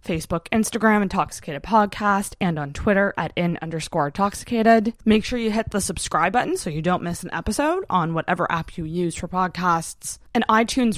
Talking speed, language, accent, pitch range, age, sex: 180 wpm, English, American, 175-240 Hz, 20-39, female